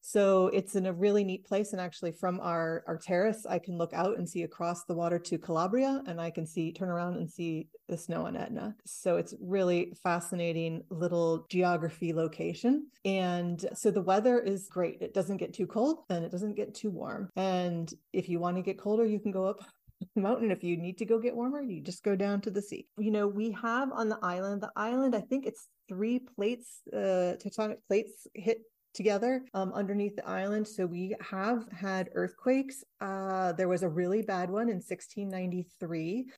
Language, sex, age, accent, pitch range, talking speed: English, female, 30-49, American, 175-215 Hz, 205 wpm